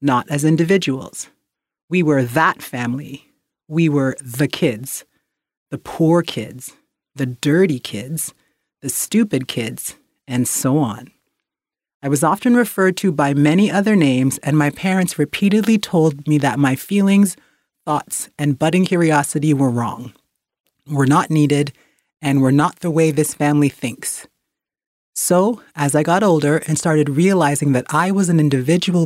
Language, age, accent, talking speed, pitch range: English, 30-49, American, 145 wpm, 140-185 Hz